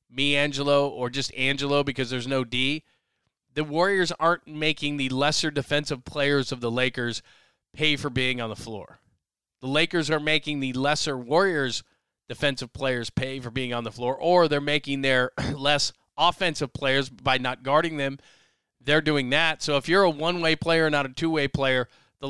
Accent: American